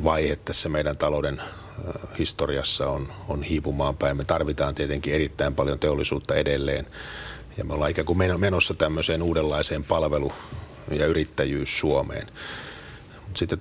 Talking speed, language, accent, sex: 130 wpm, Finnish, native, male